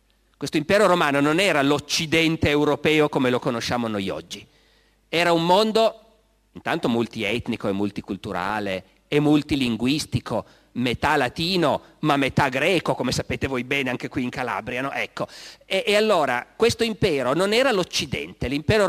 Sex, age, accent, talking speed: male, 40-59, native, 135 wpm